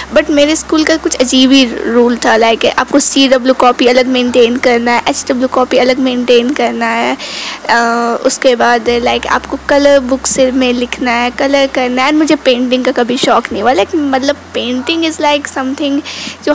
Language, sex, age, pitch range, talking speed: Hindi, female, 20-39, 245-290 Hz, 190 wpm